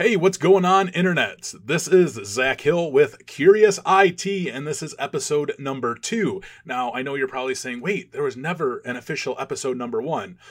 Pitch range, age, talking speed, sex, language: 135-225 Hz, 30-49, 190 wpm, male, English